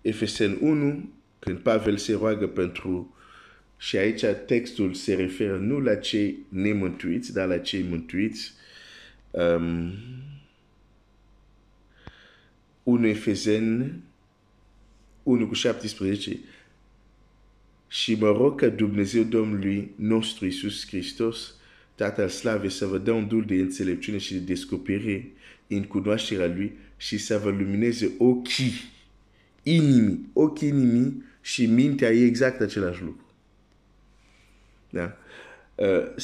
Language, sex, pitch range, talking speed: Romanian, male, 95-115 Hz, 75 wpm